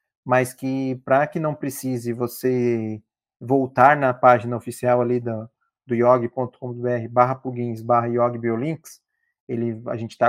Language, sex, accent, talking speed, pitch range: Portuguese, male, Brazilian, 135 wpm, 125-145 Hz